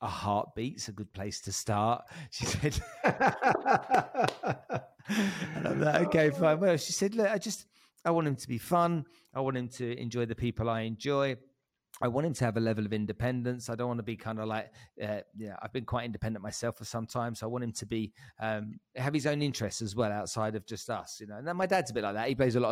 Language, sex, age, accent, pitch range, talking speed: English, male, 40-59, British, 110-150 Hz, 250 wpm